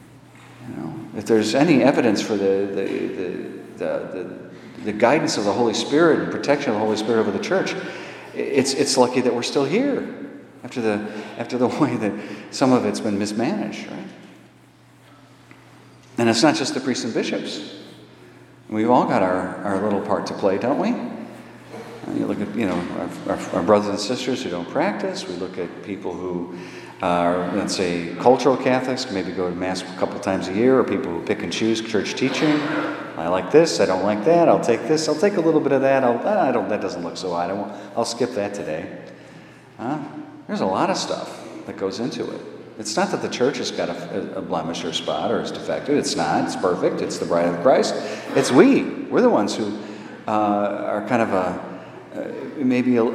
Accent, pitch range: American, 95-125 Hz